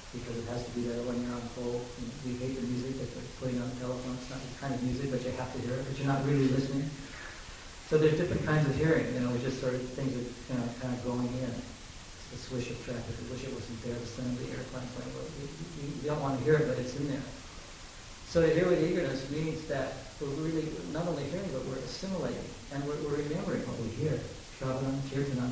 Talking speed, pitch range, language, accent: 270 wpm, 125-140 Hz, English, American